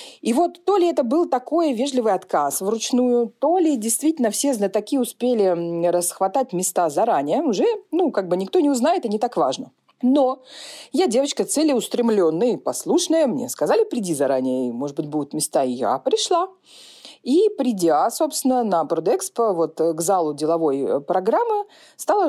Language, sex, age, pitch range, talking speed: Russian, female, 30-49, 180-295 Hz, 155 wpm